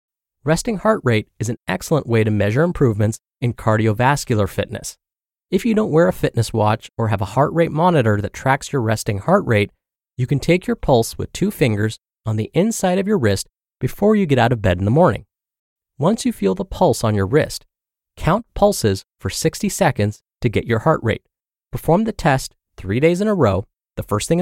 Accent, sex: American, male